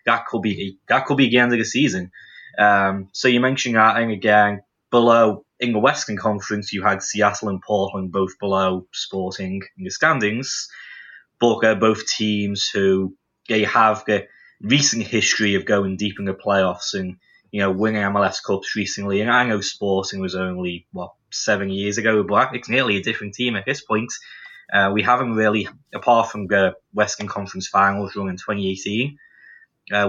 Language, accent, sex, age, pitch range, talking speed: English, British, male, 20-39, 95-115 Hz, 180 wpm